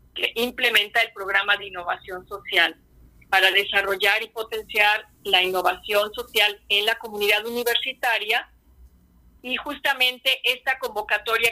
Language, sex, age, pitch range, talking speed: Spanish, female, 40-59, 210-270 Hz, 115 wpm